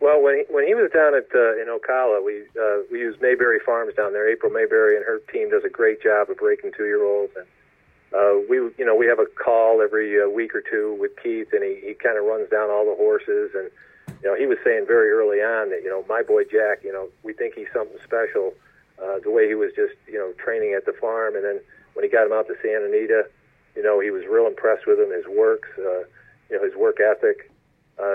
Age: 50-69